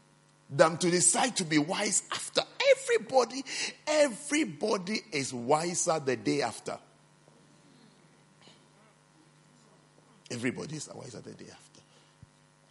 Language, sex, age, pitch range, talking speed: English, male, 50-69, 135-220 Hz, 100 wpm